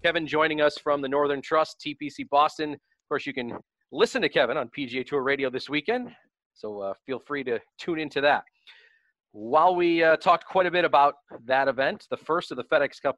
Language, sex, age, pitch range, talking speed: English, male, 30-49, 135-180 Hz, 210 wpm